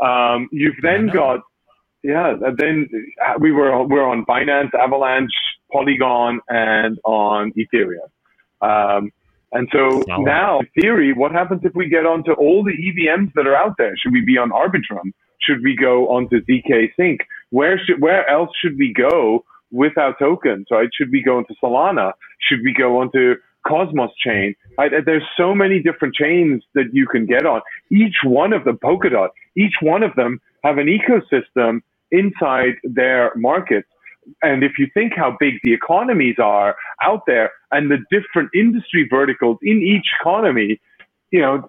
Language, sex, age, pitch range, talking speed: English, male, 40-59, 125-185 Hz, 170 wpm